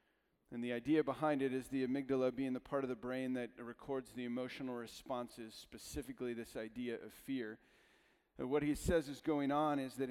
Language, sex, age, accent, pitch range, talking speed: English, male, 40-59, American, 115-140 Hz, 190 wpm